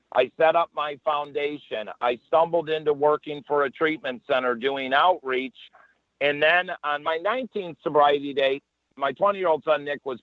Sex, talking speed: male, 160 wpm